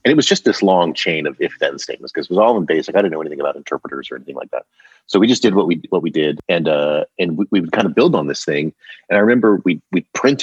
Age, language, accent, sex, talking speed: 30-49, English, American, male, 305 wpm